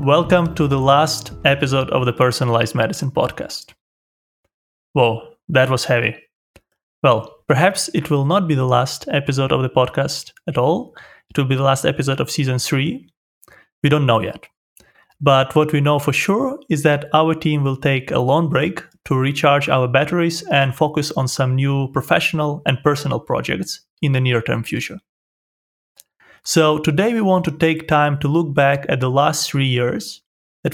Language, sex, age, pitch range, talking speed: English, male, 30-49, 135-160 Hz, 175 wpm